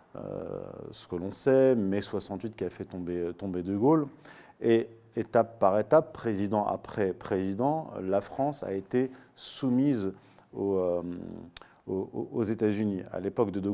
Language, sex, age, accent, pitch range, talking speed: French, male, 40-59, French, 100-130 Hz, 155 wpm